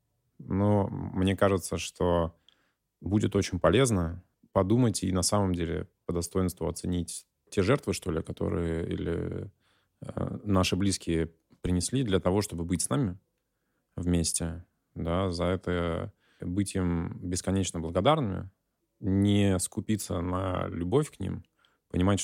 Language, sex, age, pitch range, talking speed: Russian, male, 20-39, 85-100 Hz, 120 wpm